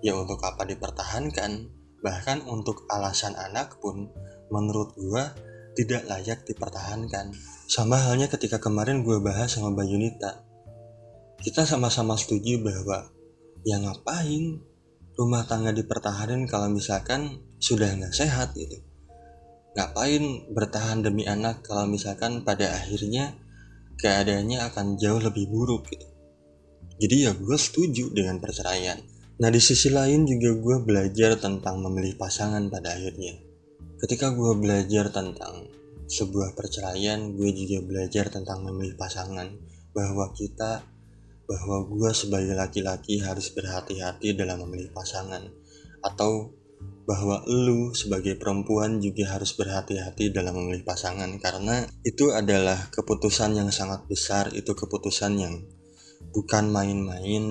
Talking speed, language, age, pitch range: 120 wpm, Indonesian, 20-39, 95-115 Hz